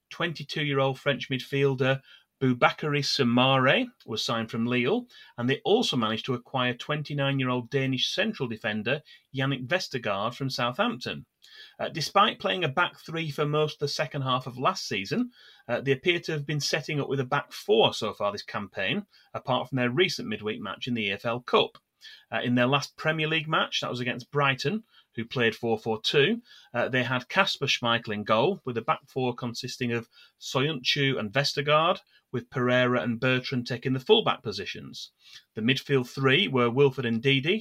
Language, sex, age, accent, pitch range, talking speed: English, male, 30-49, British, 120-150 Hz, 170 wpm